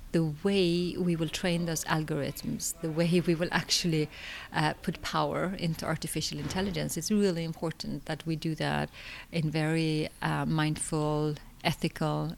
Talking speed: 145 wpm